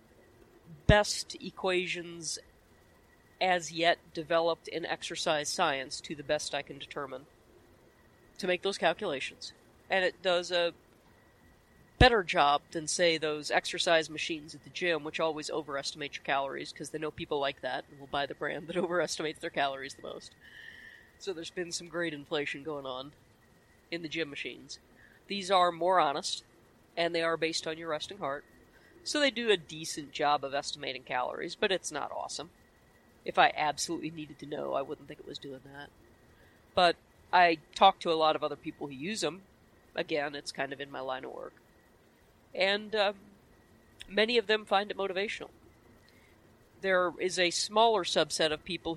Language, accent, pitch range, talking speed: English, American, 140-180 Hz, 170 wpm